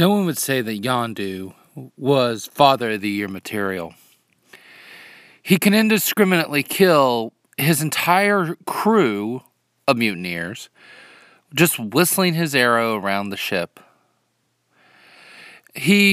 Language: English